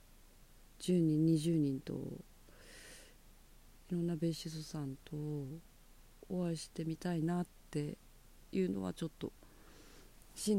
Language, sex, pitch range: Japanese, female, 160-190 Hz